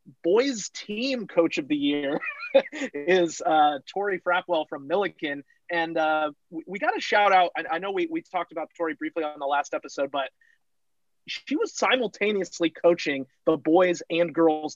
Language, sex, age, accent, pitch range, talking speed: English, male, 30-49, American, 145-180 Hz, 170 wpm